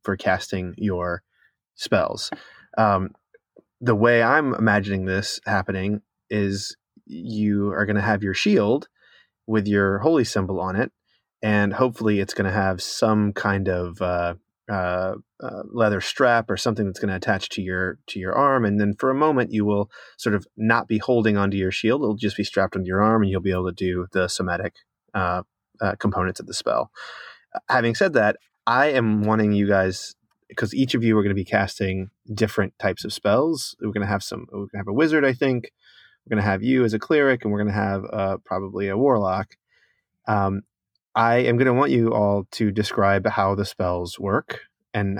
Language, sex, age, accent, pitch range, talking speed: English, male, 20-39, American, 95-110 Hz, 200 wpm